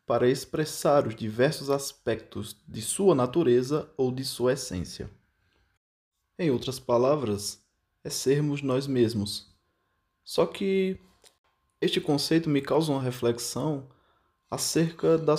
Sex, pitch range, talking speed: male, 115-150 Hz, 115 wpm